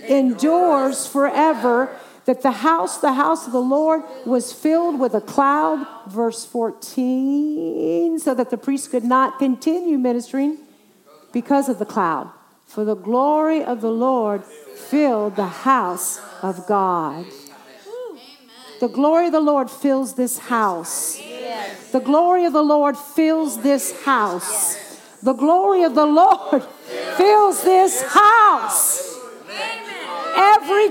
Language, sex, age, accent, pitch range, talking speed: English, female, 50-69, American, 240-325 Hz, 130 wpm